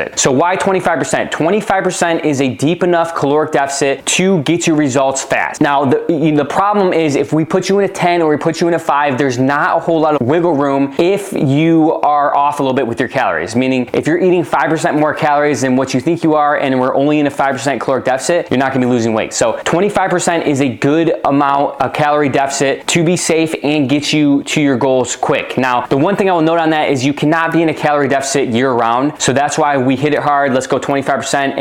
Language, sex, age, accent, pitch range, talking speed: English, male, 20-39, American, 135-165 Hz, 245 wpm